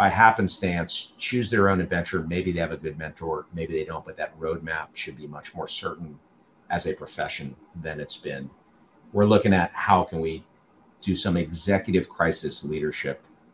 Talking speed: 175 wpm